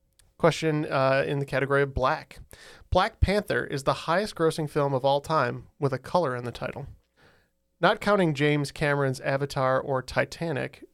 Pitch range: 125-150 Hz